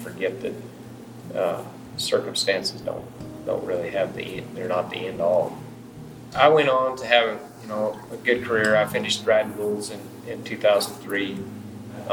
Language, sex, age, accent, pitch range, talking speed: English, male, 30-49, American, 100-120 Hz, 160 wpm